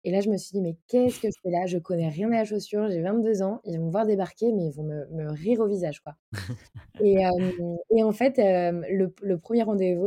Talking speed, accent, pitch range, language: 270 wpm, French, 160-190 Hz, French